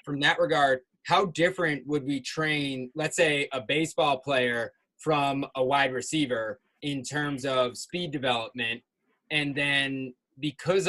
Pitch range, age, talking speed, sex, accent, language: 140-165 Hz, 20-39, 140 wpm, male, American, English